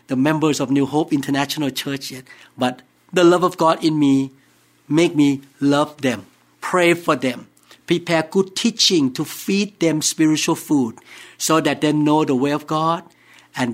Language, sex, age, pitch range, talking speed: English, male, 60-79, 140-180 Hz, 165 wpm